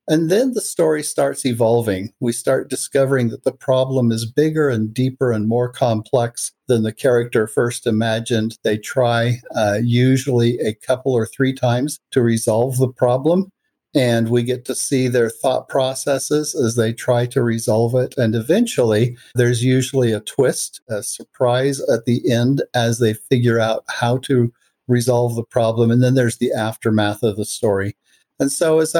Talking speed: 170 wpm